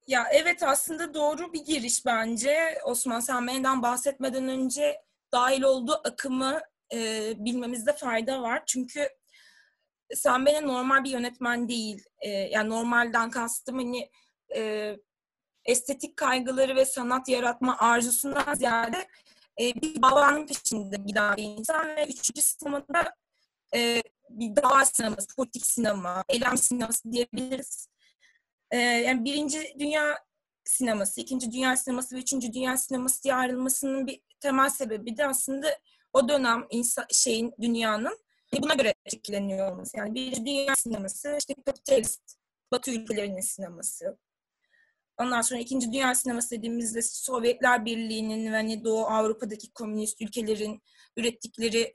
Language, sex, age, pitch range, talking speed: Turkish, female, 20-39, 230-280 Hz, 120 wpm